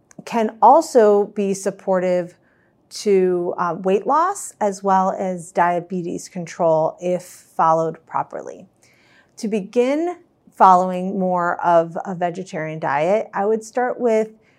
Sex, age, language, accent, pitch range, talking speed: female, 40-59, English, American, 185-225 Hz, 115 wpm